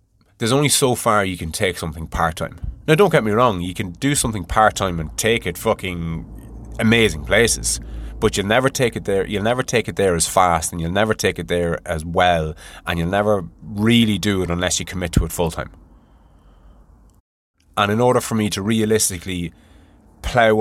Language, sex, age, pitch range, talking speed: English, male, 20-39, 85-110 Hz, 190 wpm